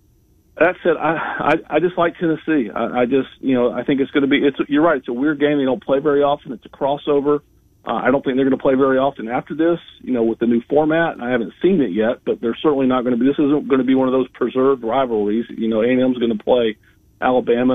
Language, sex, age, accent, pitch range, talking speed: English, male, 40-59, American, 115-140 Hz, 275 wpm